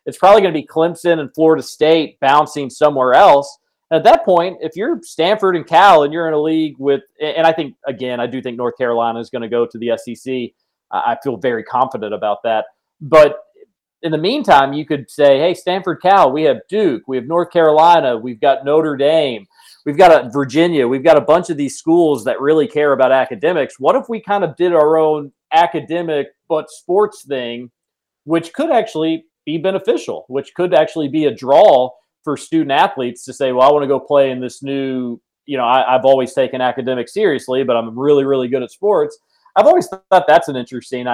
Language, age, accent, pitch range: English, 40-59, American, 125-170 Hz